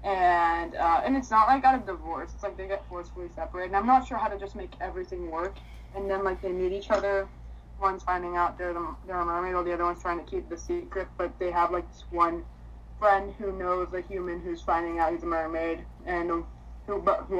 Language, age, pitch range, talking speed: English, 20-39, 165-195 Hz, 245 wpm